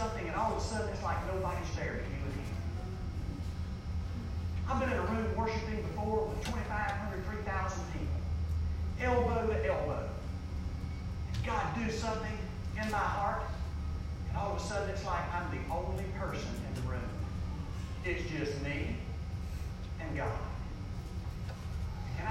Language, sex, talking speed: English, male, 135 wpm